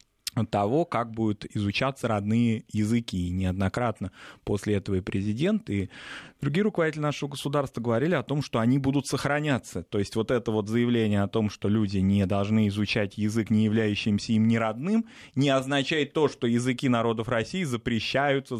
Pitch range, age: 110-135 Hz, 20-39